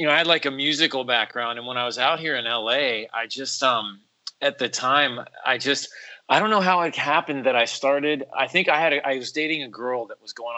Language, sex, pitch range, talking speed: English, male, 120-150 Hz, 260 wpm